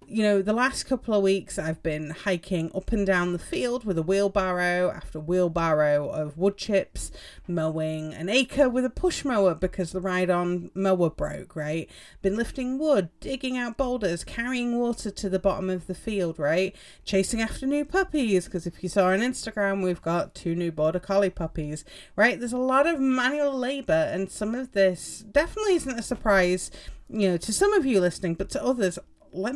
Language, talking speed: English, 195 wpm